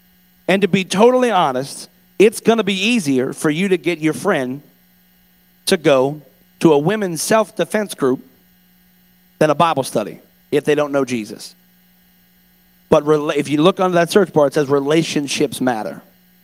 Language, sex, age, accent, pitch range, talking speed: English, male, 40-59, American, 145-180 Hz, 160 wpm